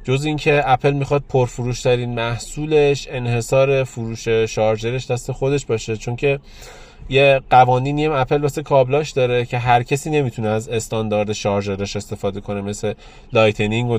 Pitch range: 120-145 Hz